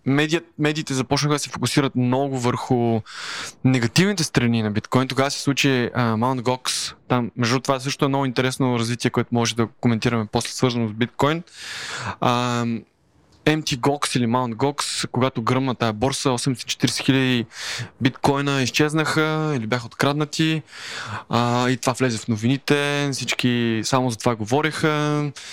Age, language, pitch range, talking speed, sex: 20-39, Bulgarian, 120-140 Hz, 135 wpm, male